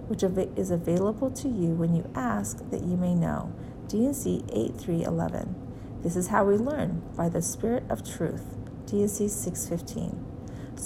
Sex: female